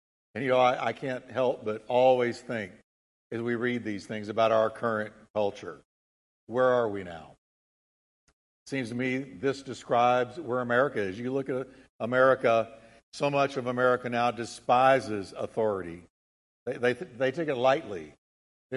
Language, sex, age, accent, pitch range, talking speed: English, male, 50-69, American, 110-145 Hz, 160 wpm